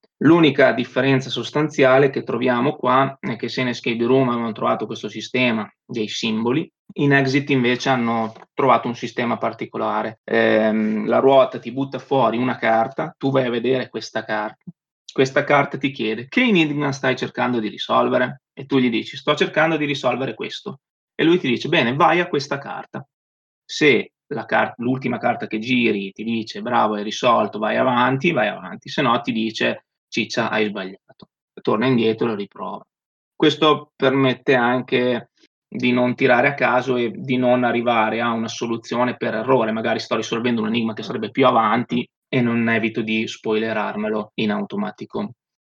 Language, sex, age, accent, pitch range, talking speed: Italian, male, 20-39, native, 115-135 Hz, 170 wpm